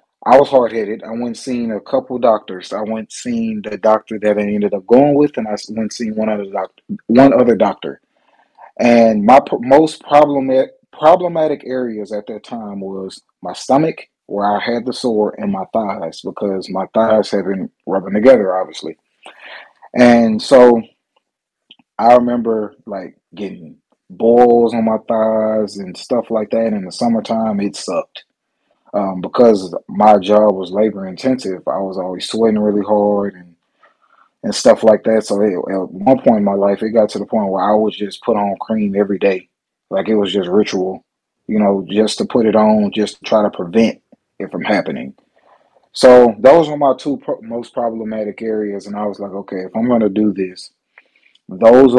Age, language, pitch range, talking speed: 30-49, English, 100-115 Hz, 180 wpm